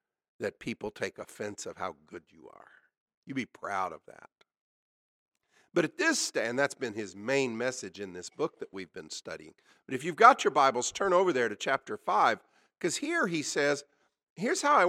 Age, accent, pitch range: 50-69, American, 115-185 Hz